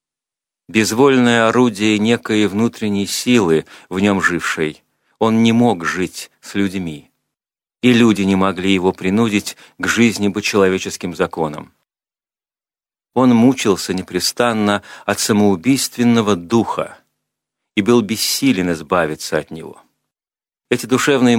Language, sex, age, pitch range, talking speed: Russian, male, 40-59, 95-115 Hz, 110 wpm